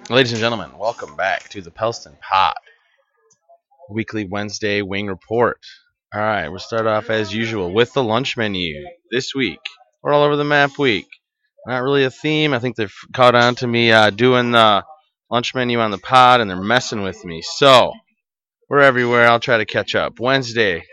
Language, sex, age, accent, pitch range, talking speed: English, male, 30-49, American, 105-135 Hz, 185 wpm